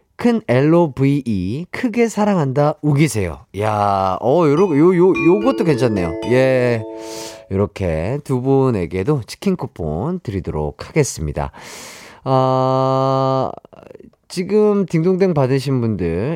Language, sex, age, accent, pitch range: Korean, male, 30-49, native, 110-185 Hz